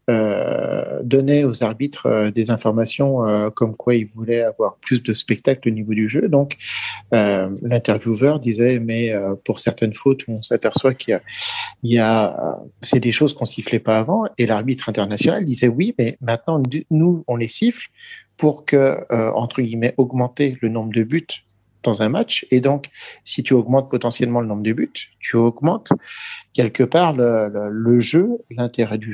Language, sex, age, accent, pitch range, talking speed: French, male, 50-69, French, 115-140 Hz, 180 wpm